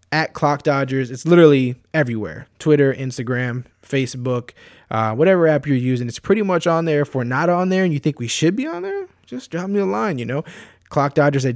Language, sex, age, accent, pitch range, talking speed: English, male, 20-39, American, 125-155 Hz, 215 wpm